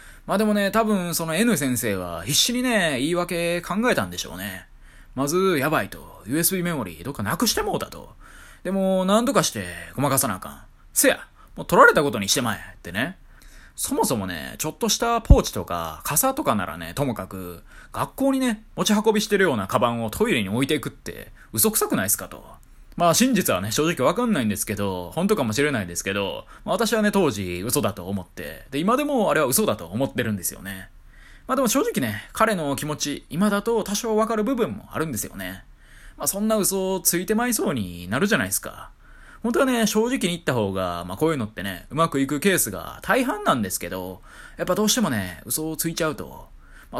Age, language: 20-39, Japanese